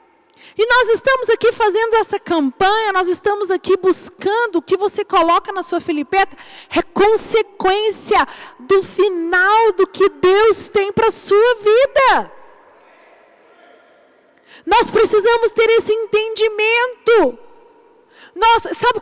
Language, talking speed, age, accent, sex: Portuguese, 115 wpm, 40-59, Brazilian, female